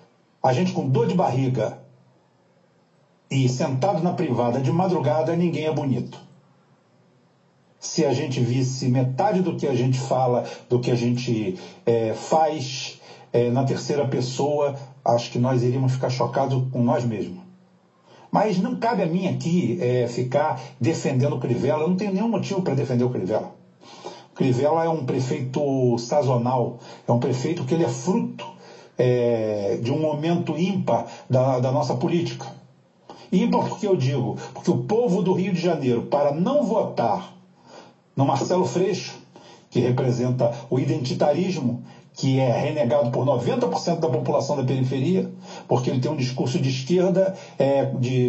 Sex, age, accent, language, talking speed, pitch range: male, 60-79, Brazilian, Portuguese, 150 wpm, 125-170 Hz